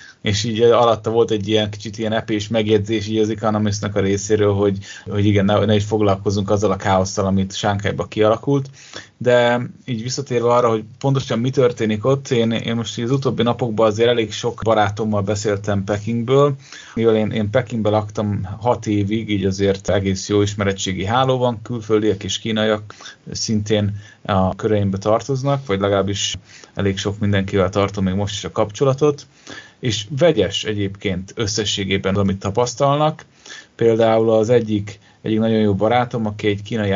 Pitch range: 100-120 Hz